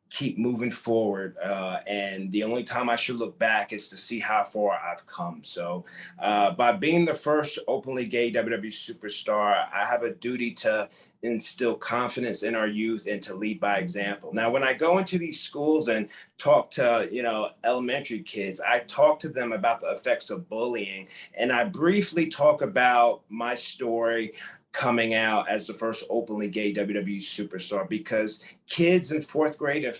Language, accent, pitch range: English, American, 115-155 Hz